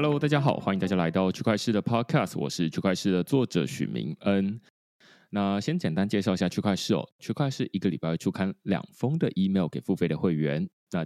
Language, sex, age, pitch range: Chinese, male, 20-39, 85-115 Hz